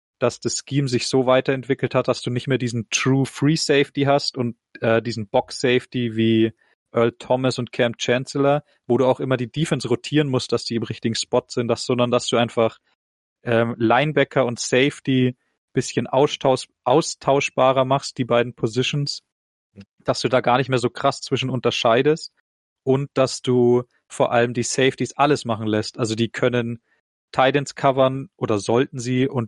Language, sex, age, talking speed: German, male, 30-49, 175 wpm